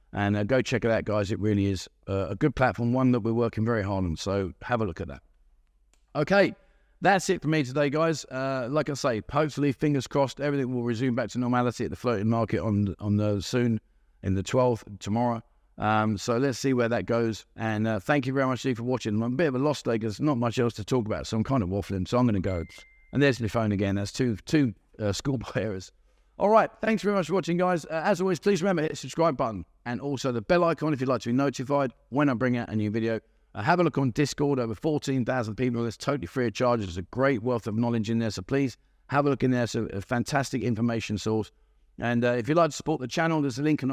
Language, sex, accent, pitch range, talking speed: English, male, British, 110-140 Hz, 265 wpm